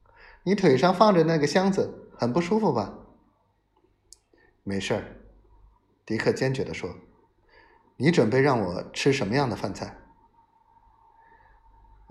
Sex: male